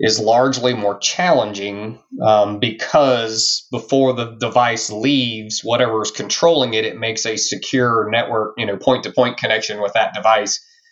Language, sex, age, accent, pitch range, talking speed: English, male, 30-49, American, 100-115 Hz, 145 wpm